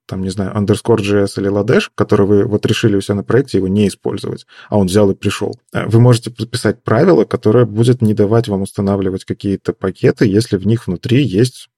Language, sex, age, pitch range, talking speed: Russian, male, 20-39, 100-120 Hz, 200 wpm